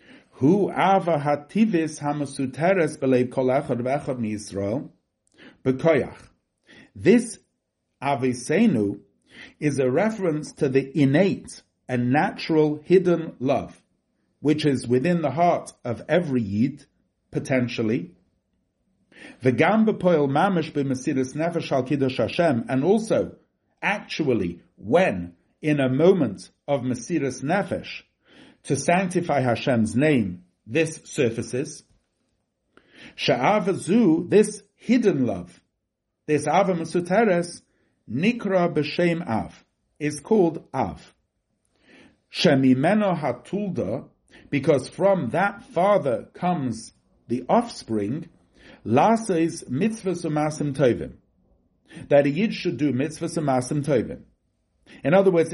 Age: 50-69